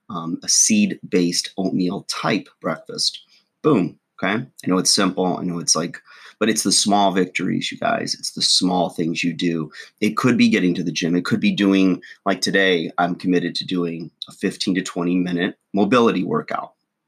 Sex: male